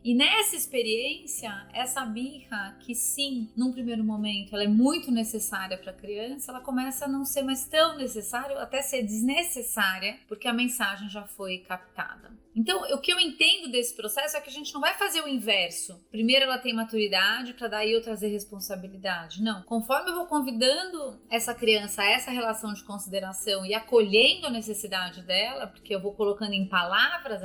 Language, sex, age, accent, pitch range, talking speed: Portuguese, female, 30-49, Brazilian, 205-255 Hz, 180 wpm